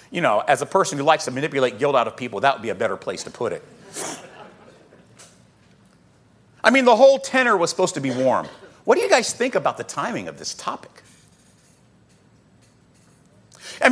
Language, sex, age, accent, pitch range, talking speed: English, male, 40-59, American, 185-270 Hz, 190 wpm